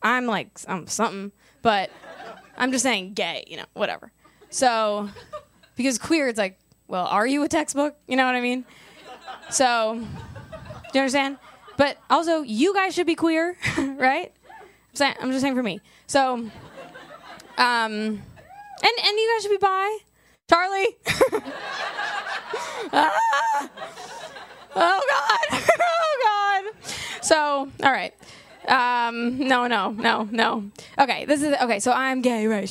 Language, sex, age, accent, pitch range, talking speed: English, female, 20-39, American, 235-320 Hz, 140 wpm